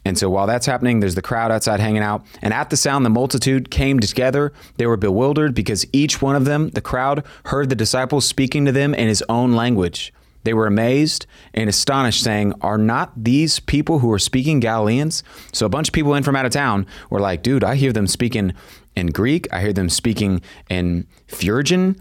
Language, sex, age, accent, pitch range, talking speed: English, male, 30-49, American, 100-135 Hz, 215 wpm